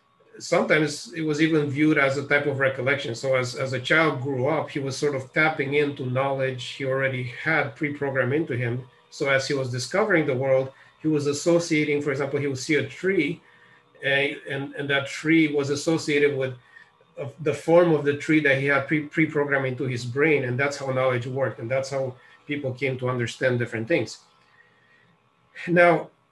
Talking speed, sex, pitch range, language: 185 wpm, male, 130-155 Hz, English